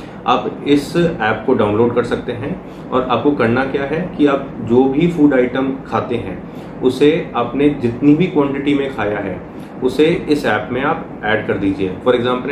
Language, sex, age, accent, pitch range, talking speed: Hindi, male, 30-49, native, 115-145 Hz, 185 wpm